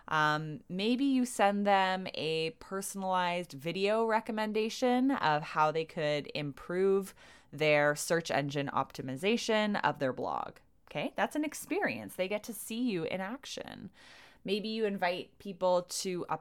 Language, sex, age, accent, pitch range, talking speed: English, female, 20-39, American, 155-220 Hz, 140 wpm